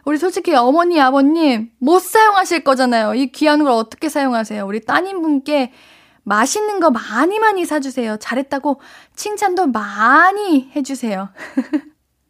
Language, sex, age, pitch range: Korean, female, 10-29, 230-325 Hz